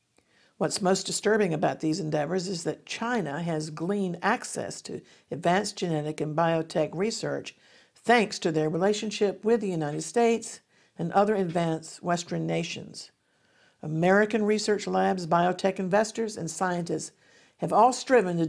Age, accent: 50-69, American